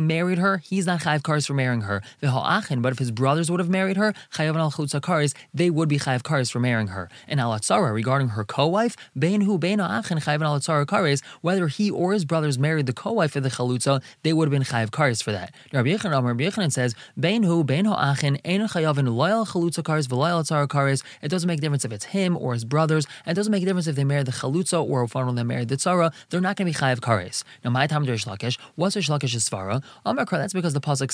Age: 20-39